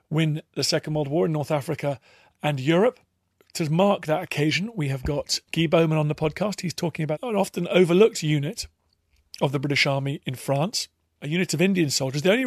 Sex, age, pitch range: male, 40-59, 135-165 Hz